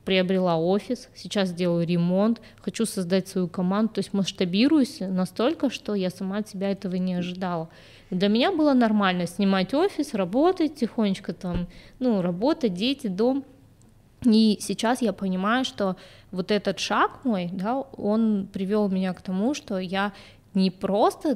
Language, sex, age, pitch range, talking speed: Russian, female, 20-39, 180-210 Hz, 150 wpm